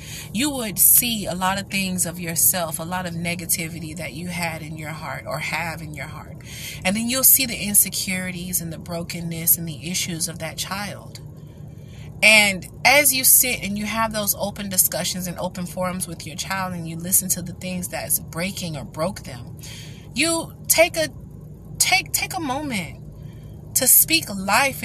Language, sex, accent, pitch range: English, female, American, 160-200 Hz